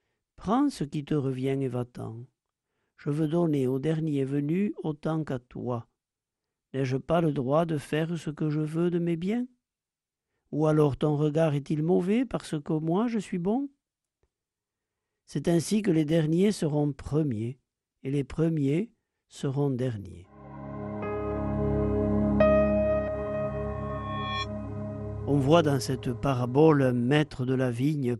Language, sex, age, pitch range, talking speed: French, male, 60-79, 125-155 Hz, 135 wpm